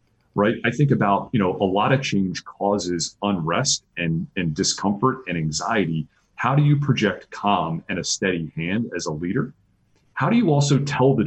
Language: English